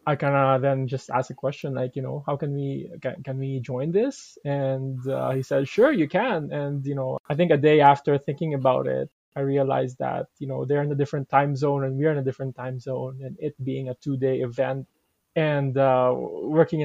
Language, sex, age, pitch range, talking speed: English, male, 20-39, 130-145 Hz, 230 wpm